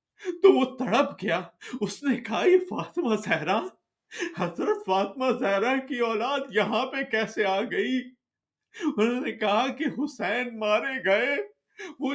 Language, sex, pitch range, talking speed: Urdu, male, 245-340 Hz, 140 wpm